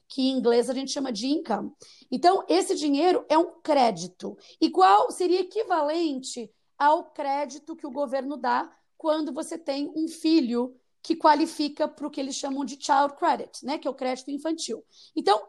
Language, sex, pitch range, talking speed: Portuguese, female, 255-315 Hz, 180 wpm